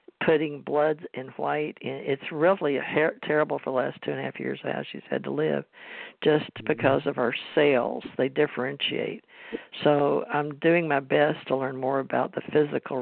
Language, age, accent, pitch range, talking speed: English, 50-69, American, 135-155 Hz, 170 wpm